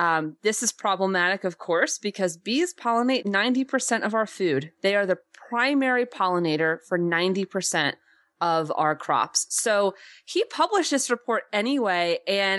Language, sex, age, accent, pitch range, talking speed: English, female, 30-49, American, 180-235 Hz, 155 wpm